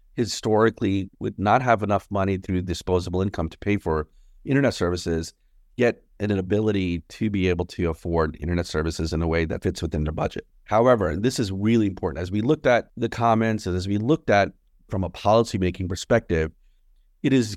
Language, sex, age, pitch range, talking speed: English, male, 30-49, 90-115 Hz, 185 wpm